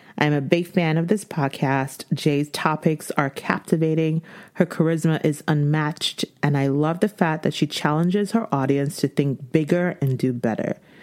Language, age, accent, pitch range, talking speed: English, 40-59, American, 145-180 Hz, 170 wpm